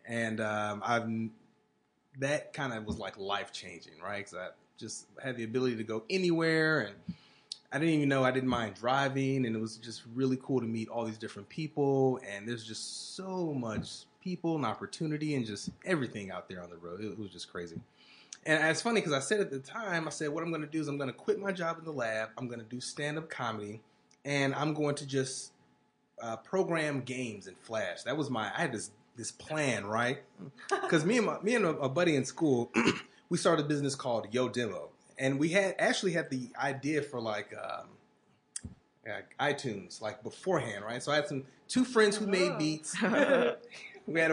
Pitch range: 115-160 Hz